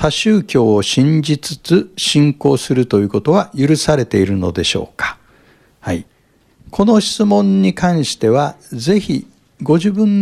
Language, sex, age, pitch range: Japanese, male, 60-79, 130-210 Hz